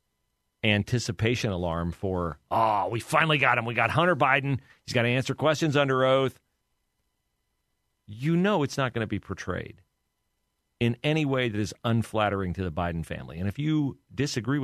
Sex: male